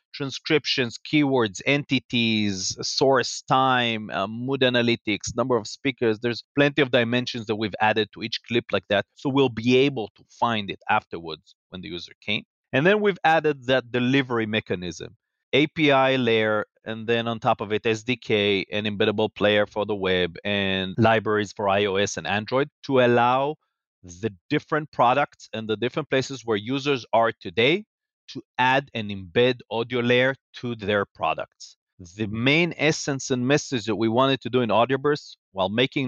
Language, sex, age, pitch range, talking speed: English, male, 30-49, 110-140 Hz, 165 wpm